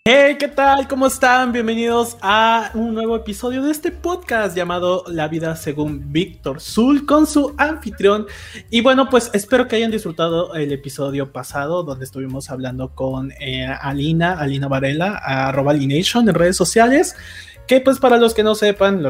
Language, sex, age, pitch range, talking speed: Spanish, male, 20-39, 145-225 Hz, 165 wpm